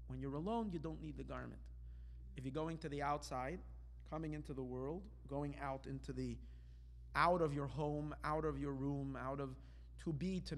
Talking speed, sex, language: 200 wpm, male, English